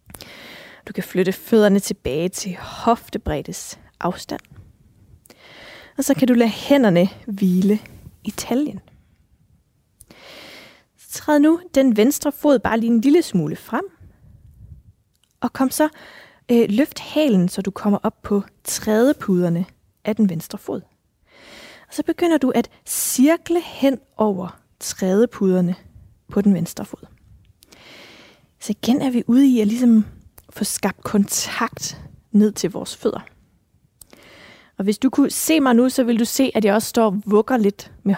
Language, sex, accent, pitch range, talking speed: Danish, female, native, 200-260 Hz, 145 wpm